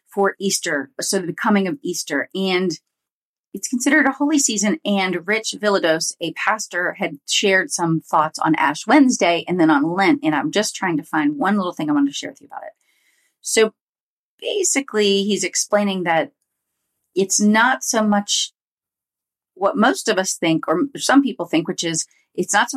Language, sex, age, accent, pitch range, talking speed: English, female, 30-49, American, 170-225 Hz, 180 wpm